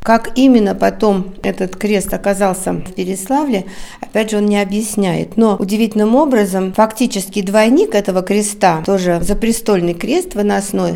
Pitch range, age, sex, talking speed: 185-230 Hz, 50-69, female, 130 wpm